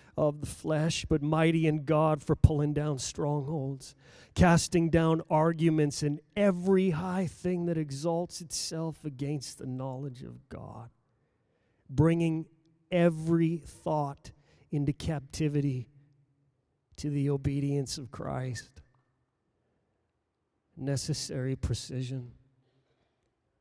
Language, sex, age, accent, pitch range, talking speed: English, male, 40-59, American, 140-170 Hz, 95 wpm